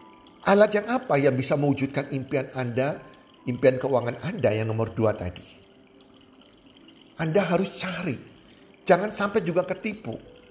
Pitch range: 130-190 Hz